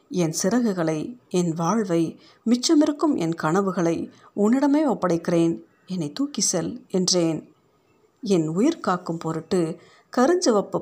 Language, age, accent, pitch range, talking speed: Tamil, 50-69, native, 170-220 Hz, 95 wpm